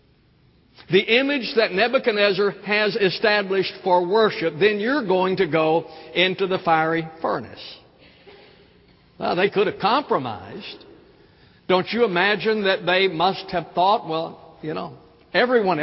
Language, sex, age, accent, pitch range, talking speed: English, male, 60-79, American, 170-225 Hz, 130 wpm